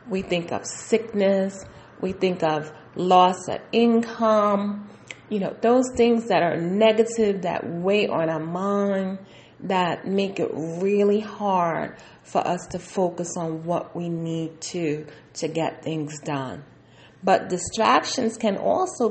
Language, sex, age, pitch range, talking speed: English, female, 30-49, 175-235 Hz, 140 wpm